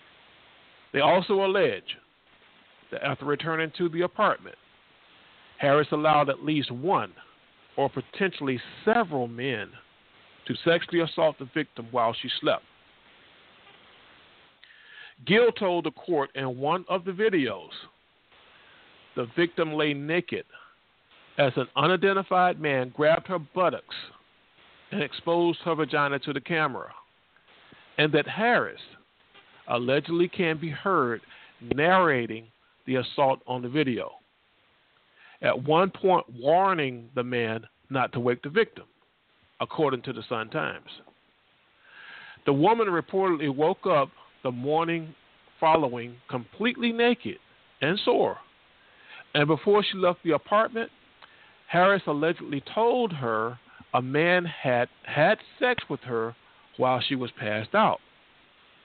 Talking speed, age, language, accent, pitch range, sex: 115 wpm, 50-69, English, American, 130-185 Hz, male